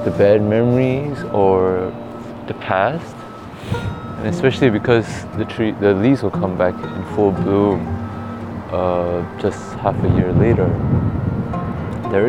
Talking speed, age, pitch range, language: 125 wpm, 20-39, 95-120 Hz, English